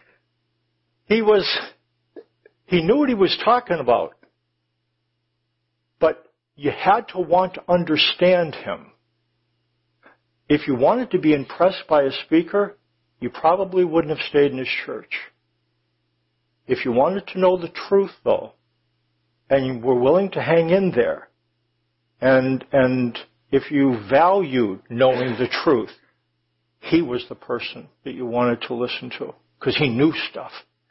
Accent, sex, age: American, male, 60-79